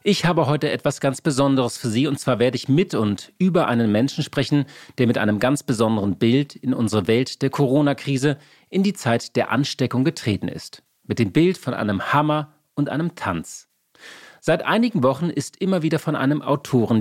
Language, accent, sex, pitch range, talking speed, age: German, German, male, 120-155 Hz, 190 wpm, 40-59